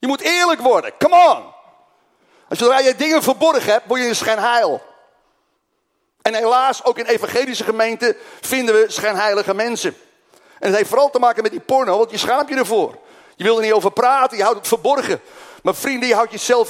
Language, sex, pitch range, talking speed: Dutch, male, 220-295 Hz, 200 wpm